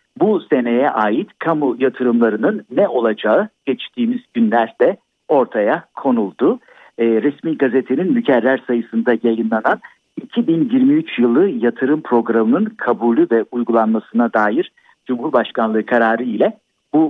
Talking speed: 100 wpm